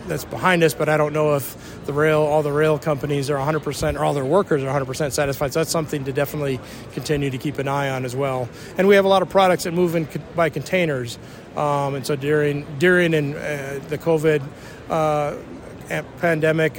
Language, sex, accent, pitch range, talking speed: English, male, American, 140-155 Hz, 235 wpm